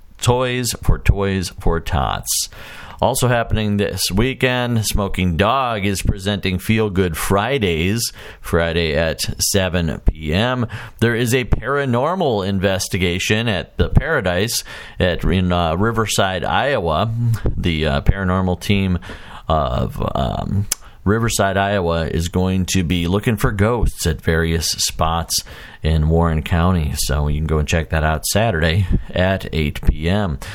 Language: English